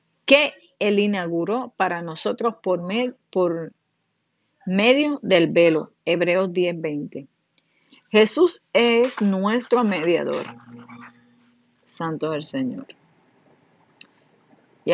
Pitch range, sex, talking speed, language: 175-215 Hz, female, 85 wpm, Spanish